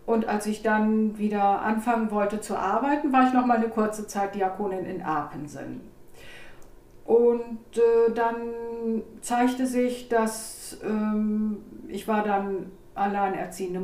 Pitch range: 195-235 Hz